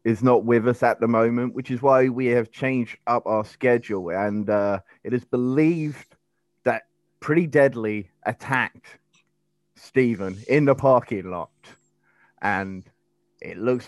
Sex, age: male, 30-49